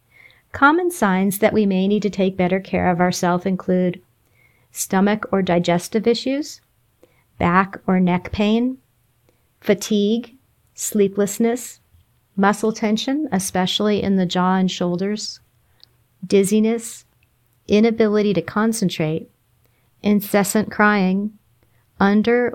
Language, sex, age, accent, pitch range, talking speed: English, female, 40-59, American, 170-210 Hz, 100 wpm